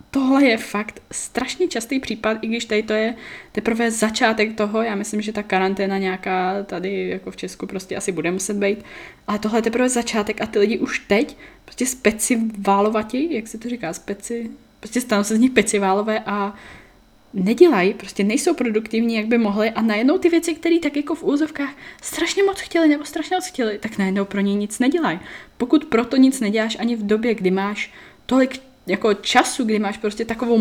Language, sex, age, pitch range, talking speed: Czech, female, 10-29, 195-255 Hz, 195 wpm